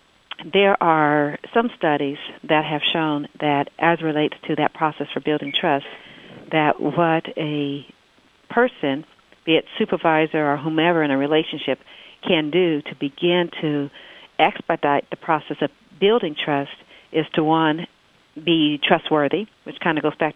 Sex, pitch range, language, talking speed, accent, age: female, 145-170 Hz, English, 145 wpm, American, 50-69